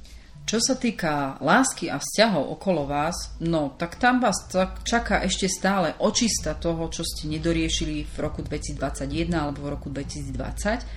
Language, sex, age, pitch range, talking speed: Slovak, female, 30-49, 145-180 Hz, 150 wpm